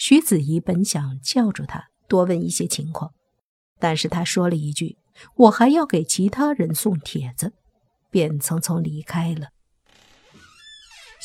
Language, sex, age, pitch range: Chinese, female, 50-69, 160-220 Hz